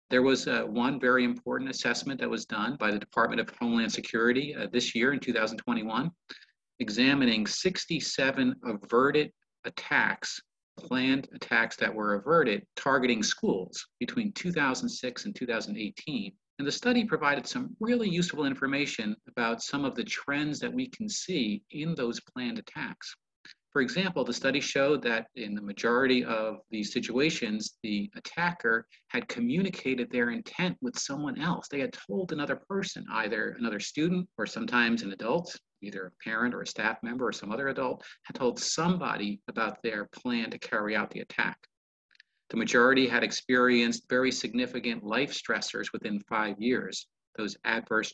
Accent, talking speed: American, 155 wpm